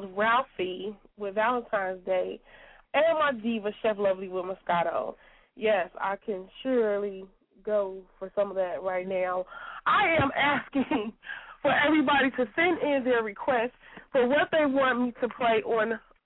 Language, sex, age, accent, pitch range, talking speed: English, female, 20-39, American, 210-275 Hz, 150 wpm